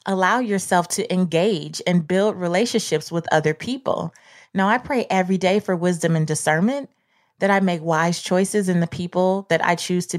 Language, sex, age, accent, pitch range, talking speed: English, female, 20-39, American, 160-210 Hz, 185 wpm